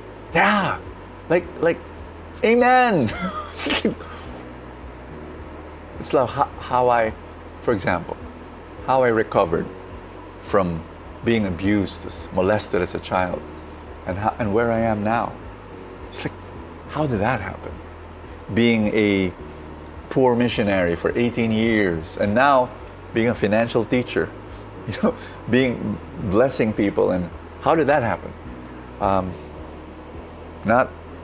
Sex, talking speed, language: male, 110 wpm, English